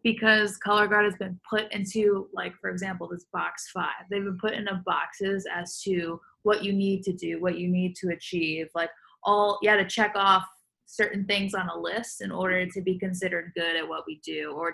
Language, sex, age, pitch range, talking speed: English, female, 20-39, 190-225 Hz, 215 wpm